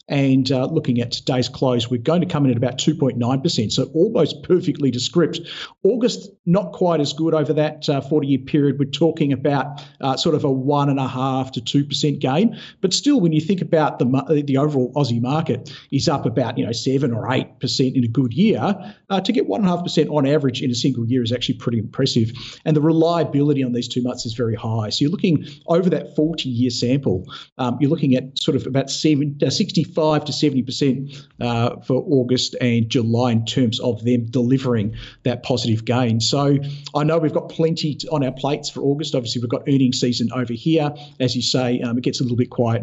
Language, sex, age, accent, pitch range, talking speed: English, male, 40-59, Australian, 125-155 Hz, 205 wpm